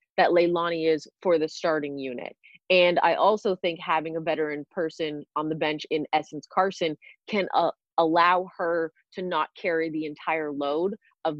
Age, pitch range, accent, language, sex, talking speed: 30-49, 160-195 Hz, American, English, female, 170 wpm